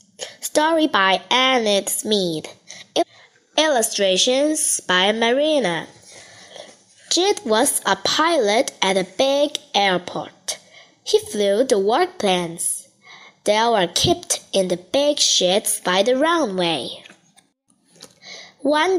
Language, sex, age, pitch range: Chinese, female, 20-39, 195-300 Hz